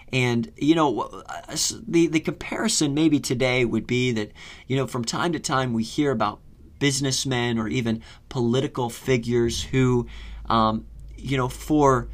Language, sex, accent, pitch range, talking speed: English, male, American, 115-140 Hz, 150 wpm